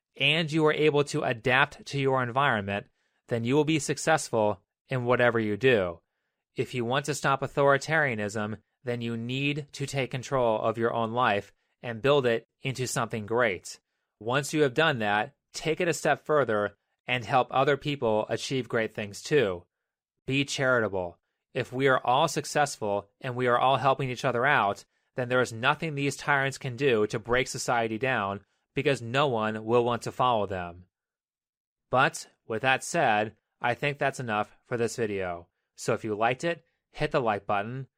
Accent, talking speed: American, 180 wpm